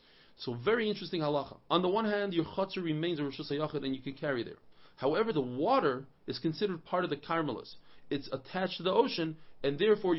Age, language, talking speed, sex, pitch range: 40-59, English, 200 wpm, male, 135-185 Hz